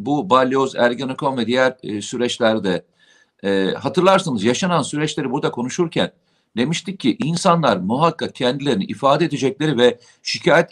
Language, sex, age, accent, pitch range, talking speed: Turkish, male, 50-69, native, 135-180 Hz, 125 wpm